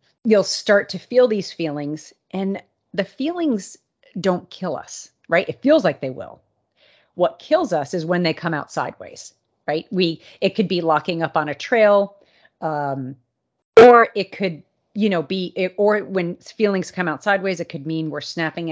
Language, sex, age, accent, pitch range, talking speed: English, female, 30-49, American, 150-195 Hz, 180 wpm